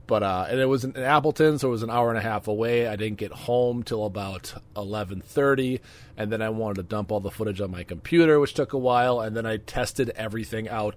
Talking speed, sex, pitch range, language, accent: 245 wpm, male, 100-125 Hz, English, American